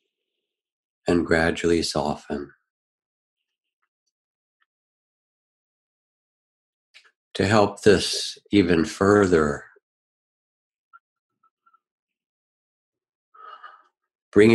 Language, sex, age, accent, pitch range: English, male, 60-79, American, 80-115 Hz